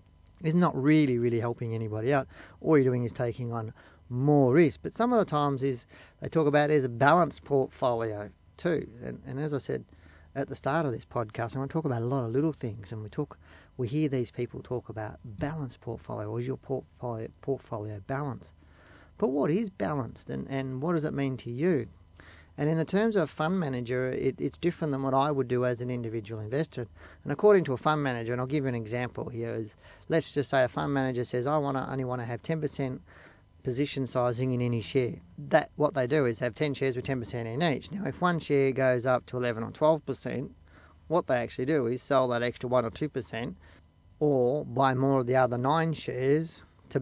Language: English